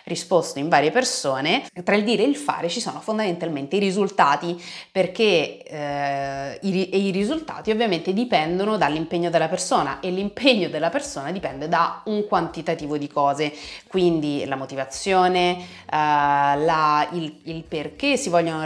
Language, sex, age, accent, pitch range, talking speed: Italian, female, 30-49, native, 160-220 Hz, 145 wpm